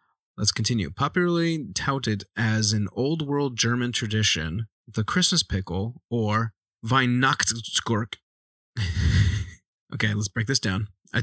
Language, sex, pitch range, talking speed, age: English, male, 105-130 Hz, 110 wpm, 30-49